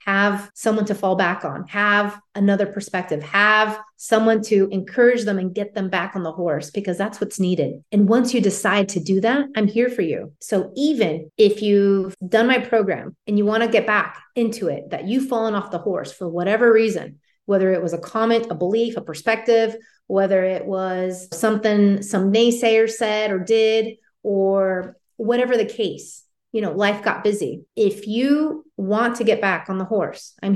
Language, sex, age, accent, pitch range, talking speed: English, female, 30-49, American, 190-225 Hz, 190 wpm